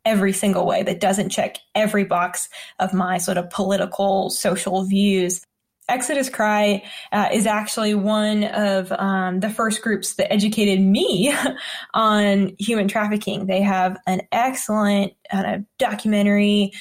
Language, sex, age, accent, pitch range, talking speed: English, female, 20-39, American, 190-215 Hz, 140 wpm